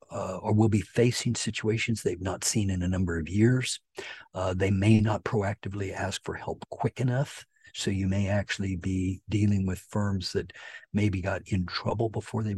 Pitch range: 95-115 Hz